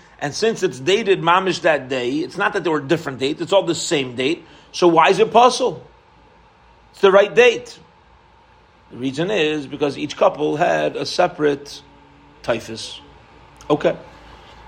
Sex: male